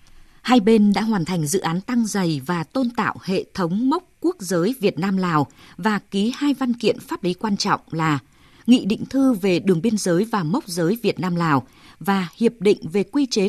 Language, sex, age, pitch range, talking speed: Vietnamese, female, 20-39, 175-235 Hz, 210 wpm